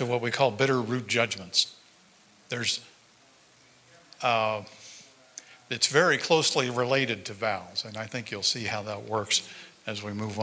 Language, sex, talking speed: English, male, 145 wpm